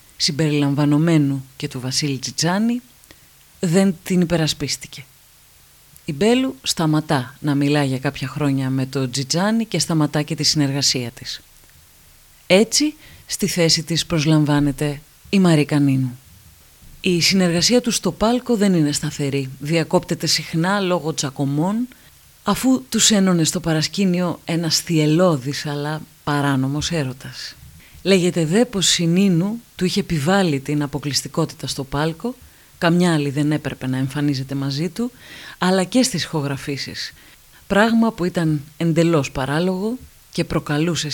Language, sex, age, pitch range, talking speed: Greek, female, 30-49, 145-180 Hz, 125 wpm